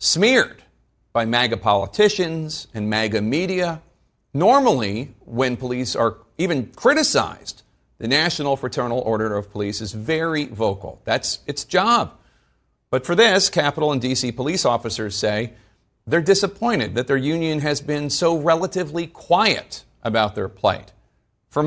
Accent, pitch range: American, 115-155 Hz